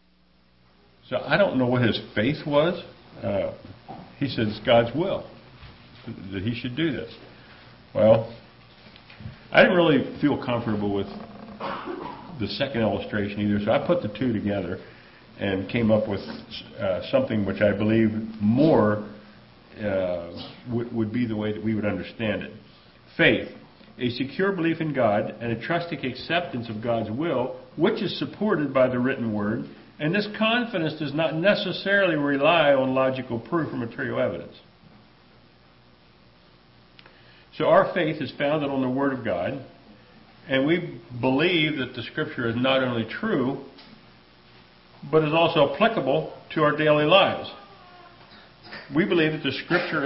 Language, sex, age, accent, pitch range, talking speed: English, male, 50-69, American, 105-150 Hz, 145 wpm